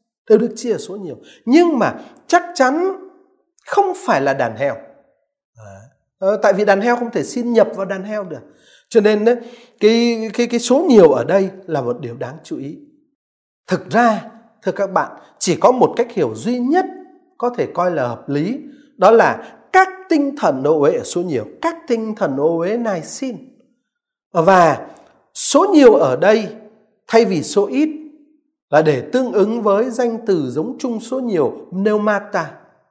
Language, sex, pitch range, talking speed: Vietnamese, male, 180-285 Hz, 175 wpm